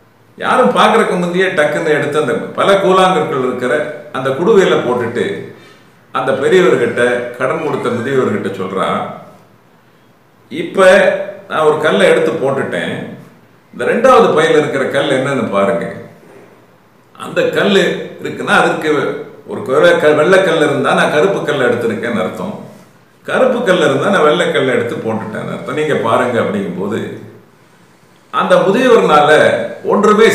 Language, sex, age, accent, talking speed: Tamil, male, 50-69, native, 115 wpm